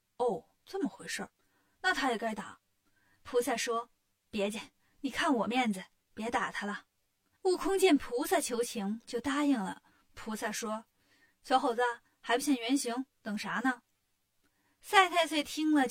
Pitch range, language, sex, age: 220-300 Hz, Chinese, female, 20-39